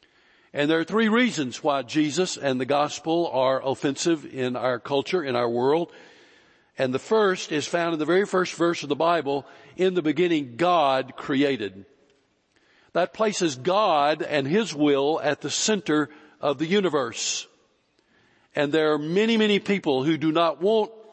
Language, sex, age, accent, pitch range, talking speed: English, male, 60-79, American, 140-180 Hz, 165 wpm